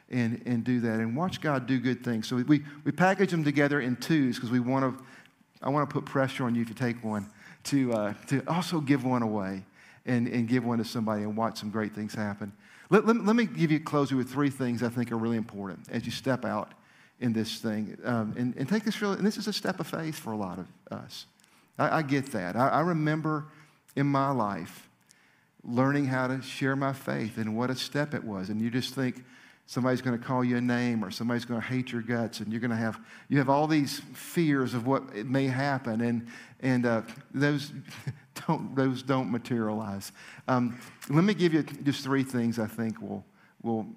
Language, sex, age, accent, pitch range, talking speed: English, male, 50-69, American, 115-150 Hz, 225 wpm